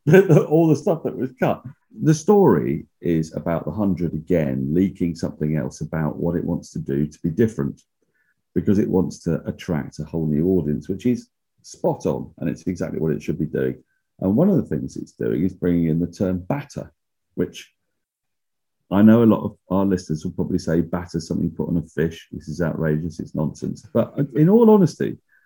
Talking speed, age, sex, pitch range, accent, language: 205 wpm, 40-59, male, 80-125 Hz, British, English